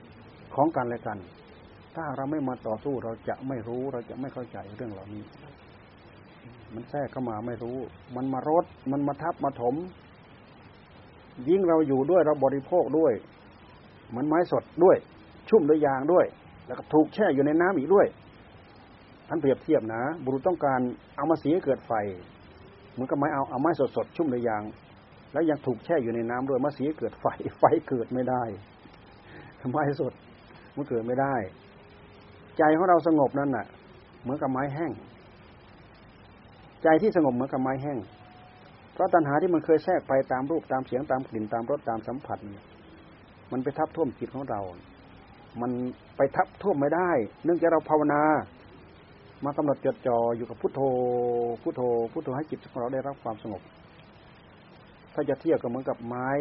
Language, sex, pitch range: Thai, male, 115-150 Hz